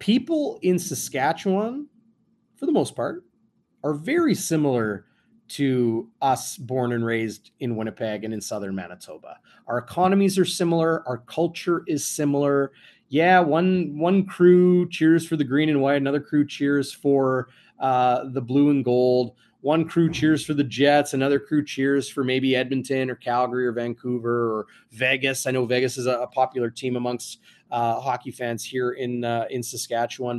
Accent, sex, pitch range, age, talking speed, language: American, male, 120-160 Hz, 30-49, 165 wpm, English